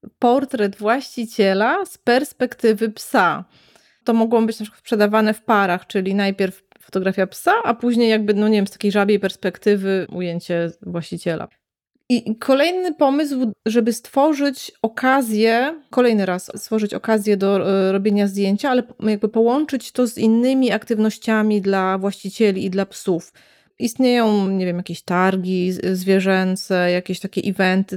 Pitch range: 190-230 Hz